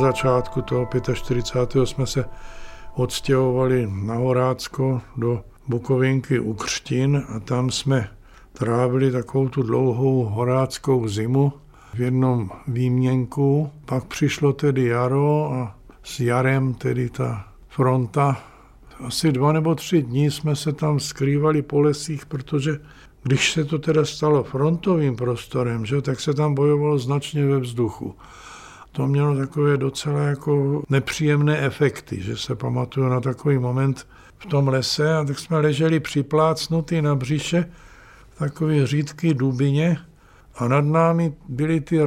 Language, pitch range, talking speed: Czech, 130-150 Hz, 135 wpm